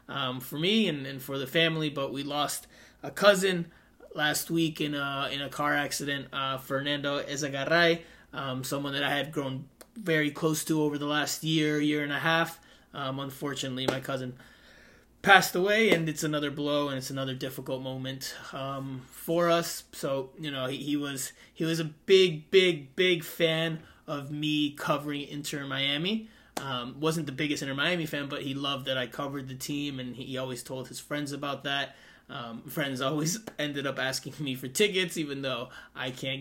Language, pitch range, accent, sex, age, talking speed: English, 130-155 Hz, American, male, 20-39, 185 wpm